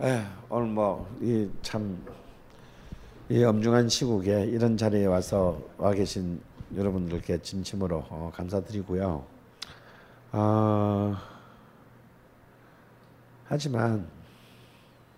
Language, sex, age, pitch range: Korean, male, 50-69, 95-130 Hz